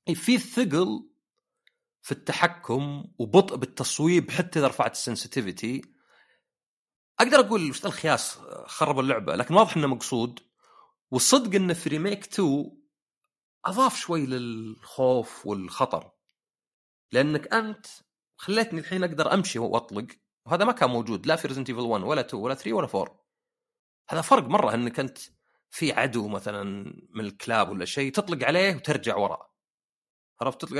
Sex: male